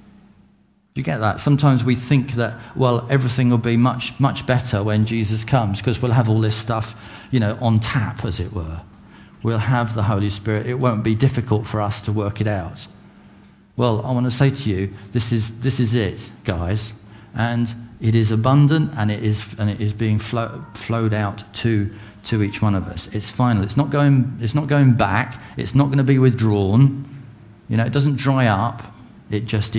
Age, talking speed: 40-59, 205 wpm